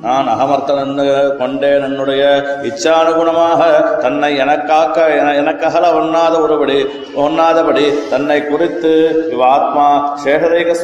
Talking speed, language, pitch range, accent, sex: 90 wpm, Tamil, 145-165 Hz, native, male